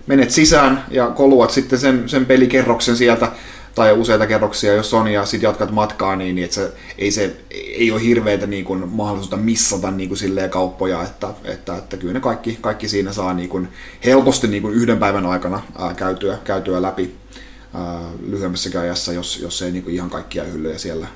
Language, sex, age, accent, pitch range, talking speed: Finnish, male, 30-49, native, 90-110 Hz, 175 wpm